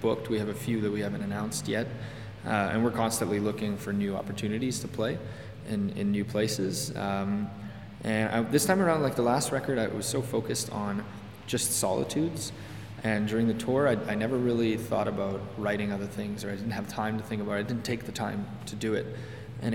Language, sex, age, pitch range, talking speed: English, male, 20-39, 105-115 Hz, 220 wpm